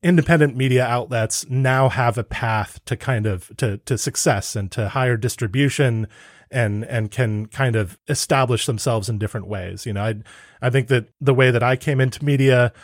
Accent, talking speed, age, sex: American, 185 wpm, 30-49, male